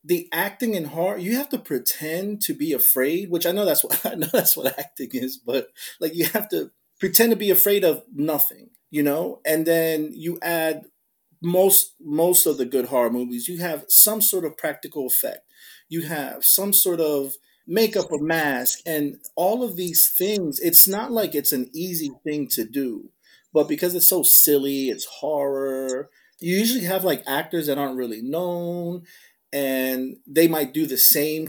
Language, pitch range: English, 145-195 Hz